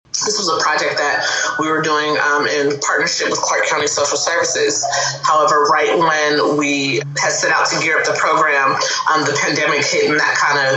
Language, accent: English, American